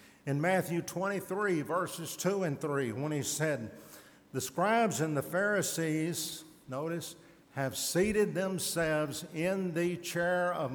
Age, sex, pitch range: 60-79, male, 140-195 Hz